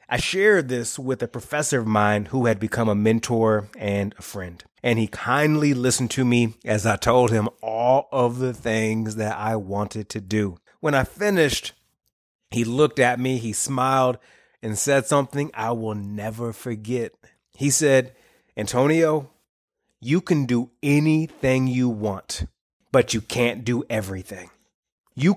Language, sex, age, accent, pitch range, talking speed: English, male, 30-49, American, 115-150 Hz, 155 wpm